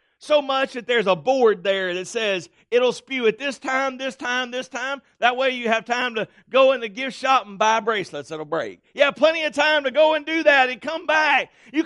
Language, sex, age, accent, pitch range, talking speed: English, male, 50-69, American, 210-305 Hz, 245 wpm